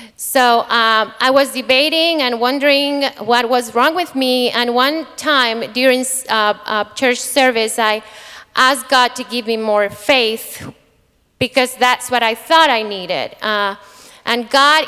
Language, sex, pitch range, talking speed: English, female, 220-270 Hz, 155 wpm